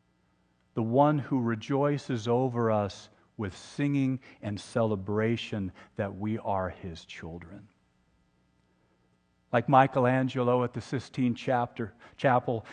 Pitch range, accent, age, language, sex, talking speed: 90-125 Hz, American, 50-69, English, male, 100 wpm